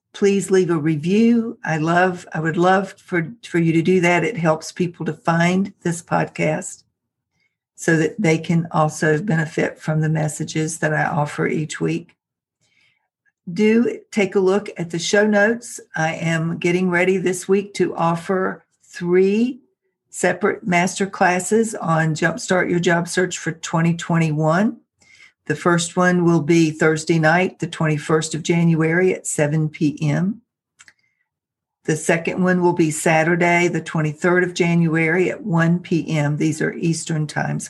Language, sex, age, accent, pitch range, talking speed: English, female, 60-79, American, 160-185 Hz, 150 wpm